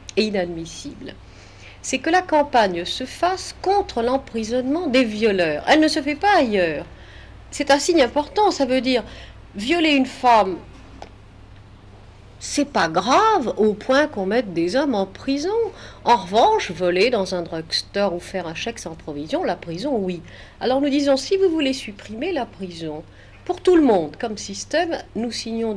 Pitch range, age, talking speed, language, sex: 175-265 Hz, 40-59, 165 wpm, French, female